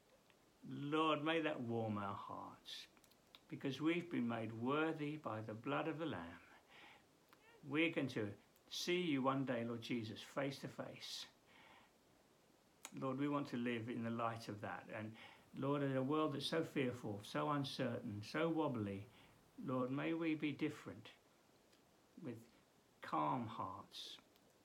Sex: male